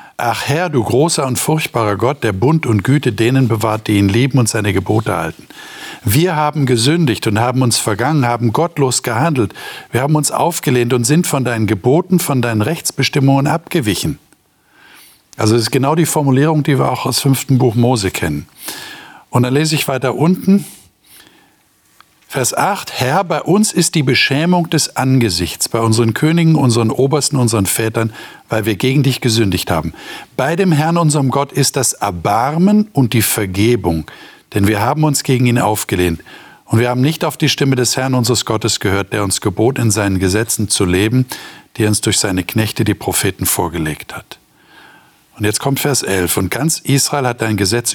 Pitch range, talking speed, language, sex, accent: 110-145 Hz, 180 wpm, German, male, German